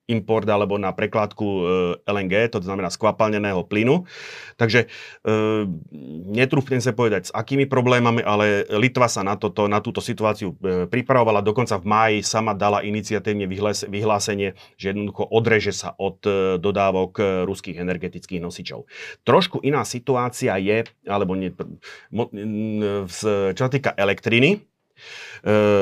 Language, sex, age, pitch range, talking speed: Slovak, male, 30-49, 95-115 Hz, 135 wpm